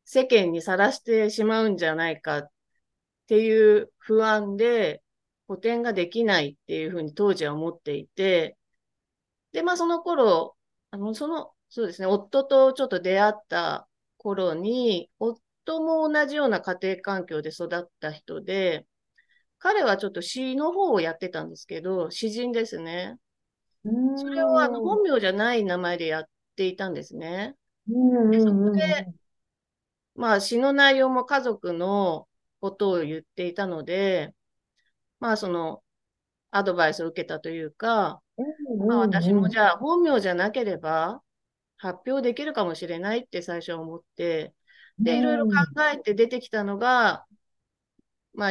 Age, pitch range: 30-49, 175-235 Hz